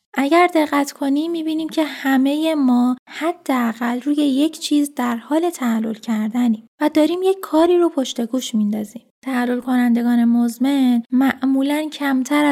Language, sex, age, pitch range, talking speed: Persian, female, 10-29, 235-295 Hz, 135 wpm